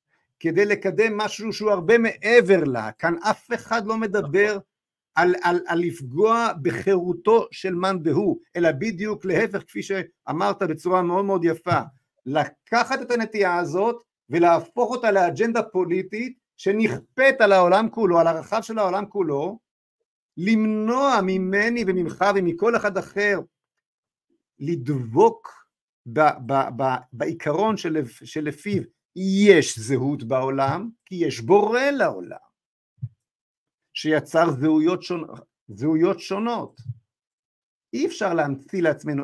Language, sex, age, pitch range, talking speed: Hebrew, male, 50-69, 150-210 Hz, 115 wpm